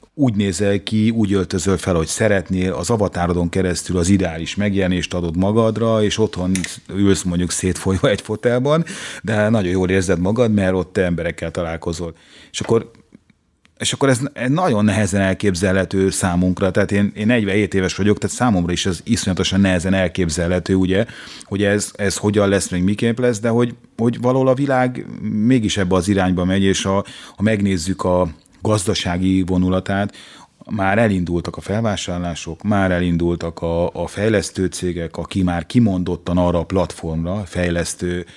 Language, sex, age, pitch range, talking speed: Hungarian, male, 30-49, 90-105 Hz, 150 wpm